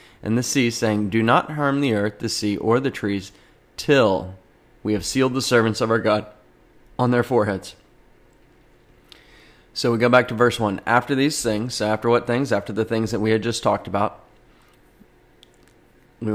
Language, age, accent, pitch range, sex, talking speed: English, 30-49, American, 100-115 Hz, male, 185 wpm